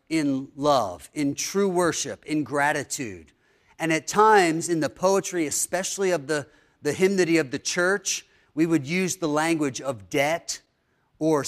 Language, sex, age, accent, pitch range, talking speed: English, male, 40-59, American, 150-180 Hz, 150 wpm